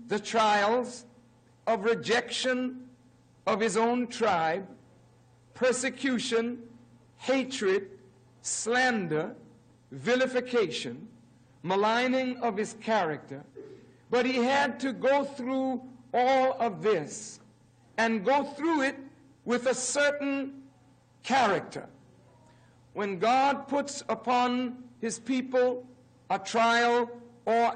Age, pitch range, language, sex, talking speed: 60-79, 215-265 Hz, French, male, 90 wpm